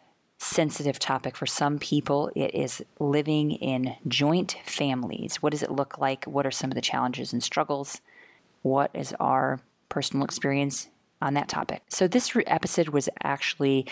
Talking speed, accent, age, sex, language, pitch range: 160 wpm, American, 20-39, female, English, 135-165 Hz